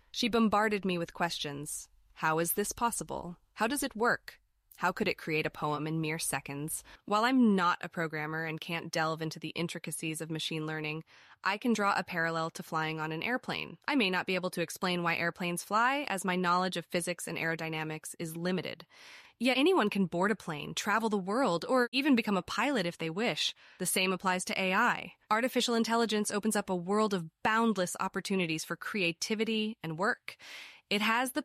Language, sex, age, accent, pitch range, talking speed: English, female, 20-39, American, 175-235 Hz, 195 wpm